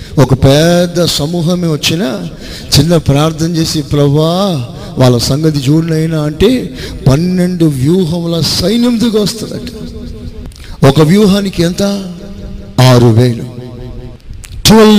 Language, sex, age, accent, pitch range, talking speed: Telugu, male, 50-69, native, 140-200 Hz, 90 wpm